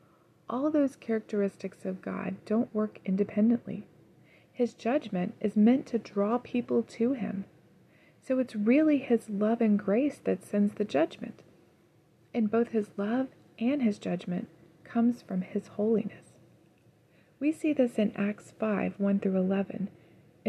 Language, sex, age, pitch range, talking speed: English, female, 30-49, 195-235 Hz, 140 wpm